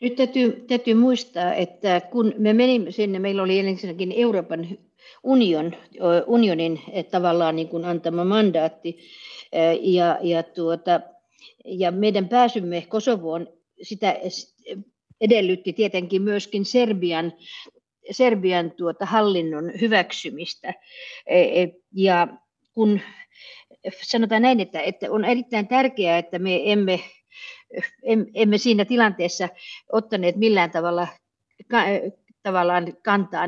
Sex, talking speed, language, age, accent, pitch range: female, 100 wpm, Finnish, 60-79, native, 180-230 Hz